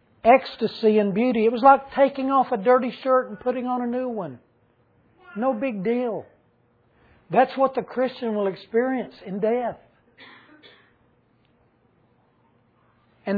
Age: 60-79